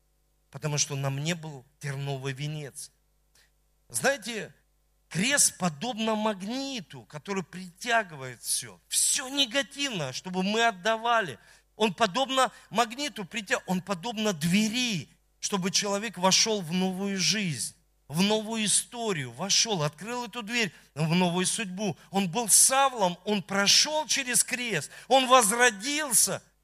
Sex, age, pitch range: male, 50-69, 150-215 Hz